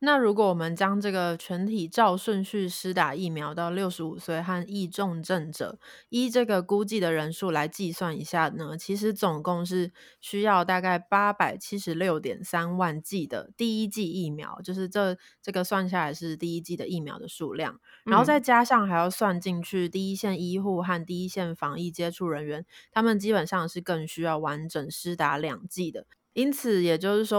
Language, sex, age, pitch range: Chinese, female, 20-39, 165-200 Hz